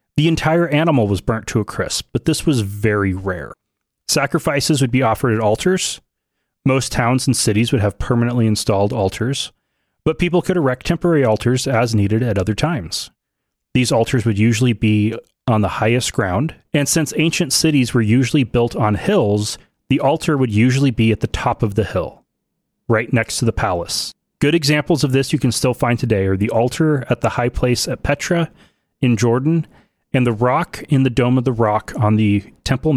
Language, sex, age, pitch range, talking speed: English, male, 30-49, 110-145 Hz, 190 wpm